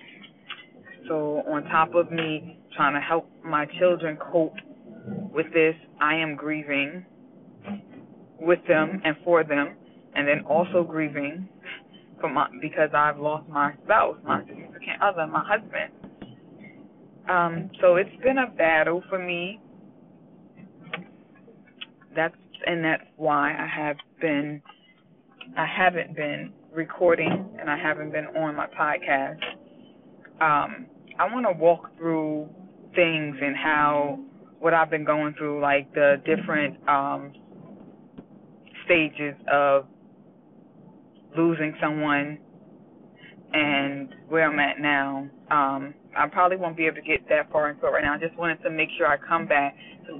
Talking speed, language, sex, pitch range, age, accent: 135 wpm, English, female, 145-170 Hz, 20-39, American